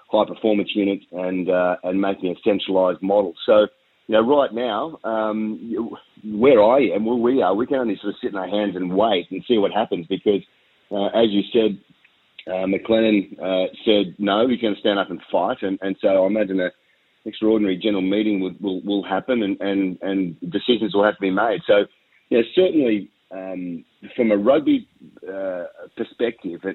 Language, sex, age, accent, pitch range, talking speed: English, male, 30-49, Australian, 95-110 Hz, 195 wpm